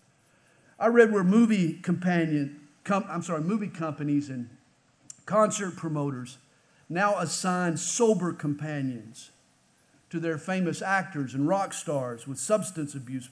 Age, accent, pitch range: 50-69, American, 150-225 Hz